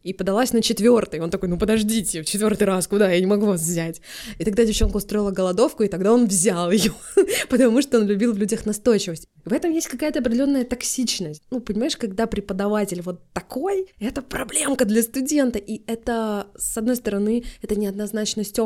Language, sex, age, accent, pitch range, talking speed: Russian, female, 20-39, native, 185-235 Hz, 185 wpm